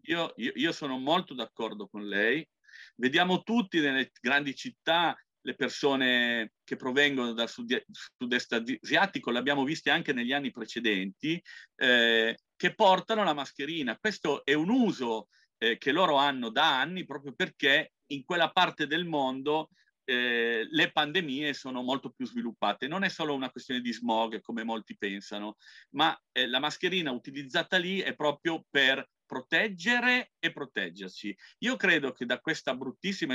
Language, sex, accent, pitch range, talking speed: Italian, male, native, 115-160 Hz, 150 wpm